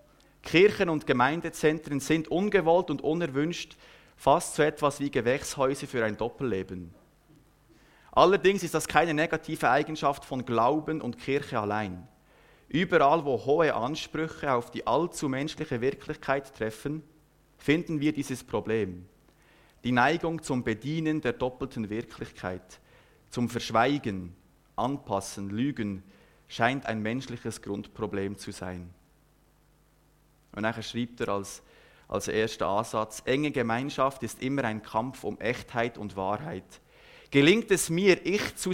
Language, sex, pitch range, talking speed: German, male, 110-150 Hz, 125 wpm